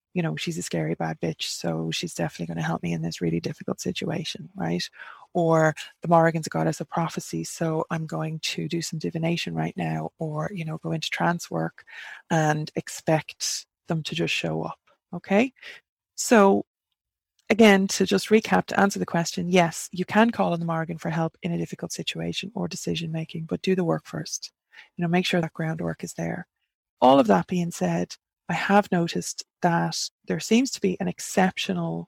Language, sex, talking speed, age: English, female, 195 wpm, 20-39